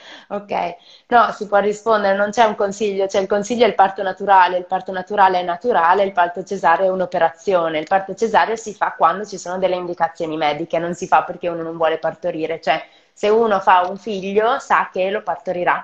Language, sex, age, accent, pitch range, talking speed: Italian, female, 20-39, native, 175-210 Hz, 210 wpm